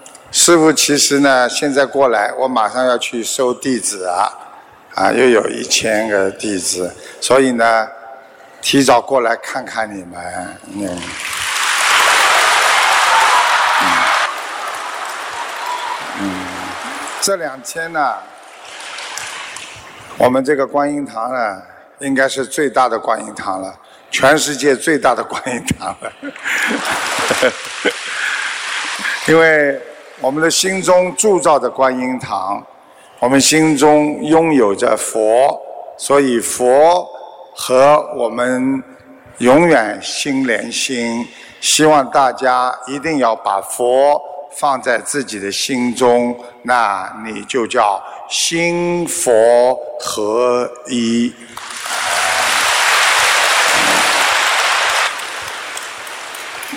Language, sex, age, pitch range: Chinese, male, 60-79, 120-155 Hz